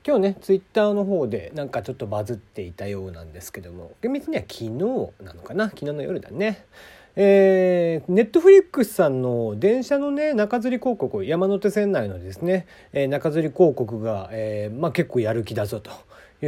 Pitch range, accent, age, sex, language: 125-195 Hz, native, 40-59, male, Japanese